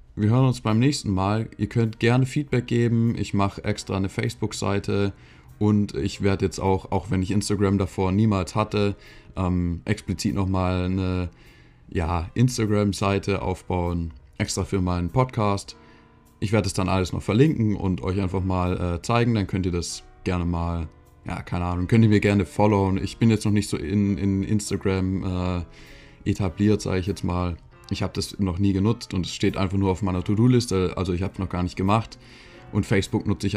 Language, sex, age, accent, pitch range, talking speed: German, male, 20-39, German, 90-105 Hz, 190 wpm